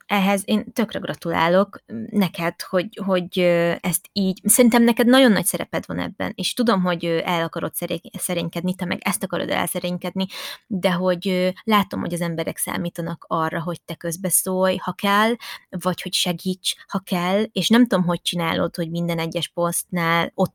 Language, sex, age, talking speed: Hungarian, female, 20-39, 165 wpm